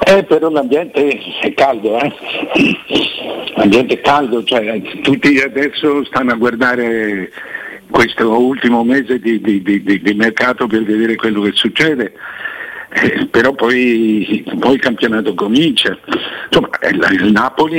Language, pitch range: Italian, 110-155 Hz